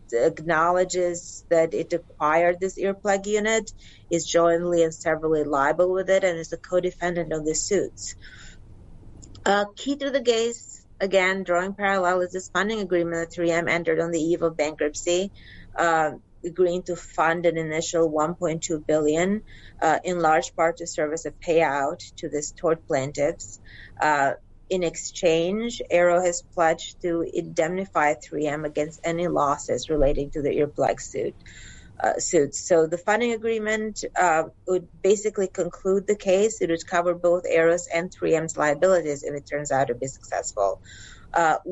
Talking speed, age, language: 155 wpm, 30-49, English